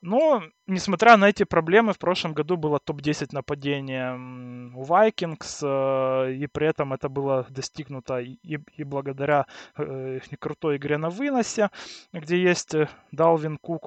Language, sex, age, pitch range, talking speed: Russian, male, 20-39, 140-175 Hz, 135 wpm